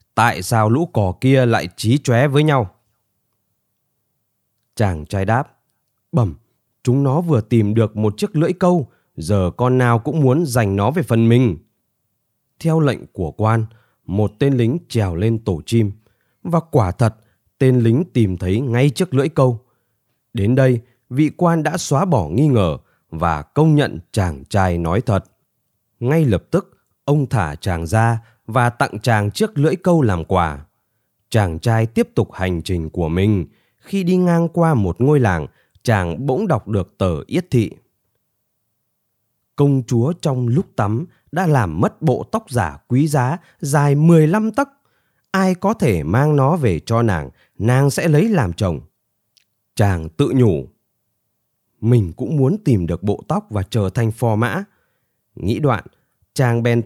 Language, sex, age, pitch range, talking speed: Vietnamese, male, 20-39, 105-140 Hz, 165 wpm